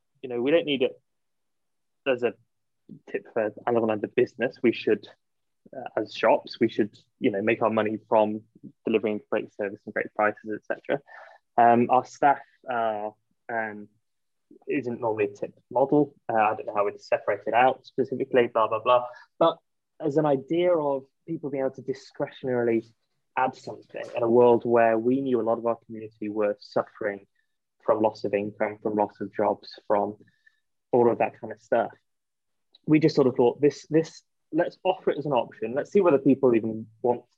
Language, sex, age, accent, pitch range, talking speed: English, male, 20-39, British, 110-140 Hz, 185 wpm